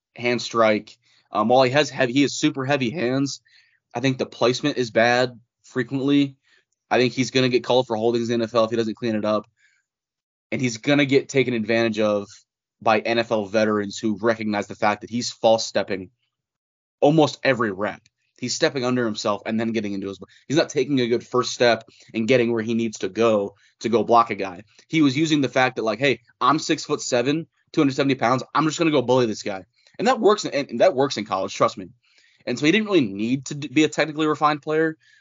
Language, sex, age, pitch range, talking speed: English, male, 20-39, 110-140 Hz, 220 wpm